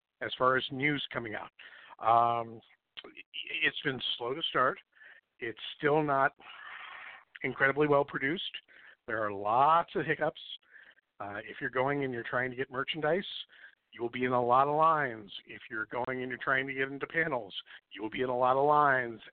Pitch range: 115-135 Hz